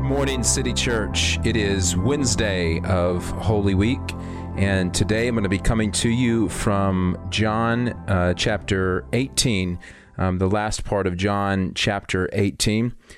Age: 40-59